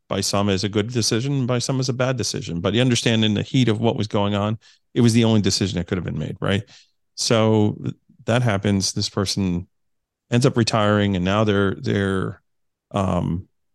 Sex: male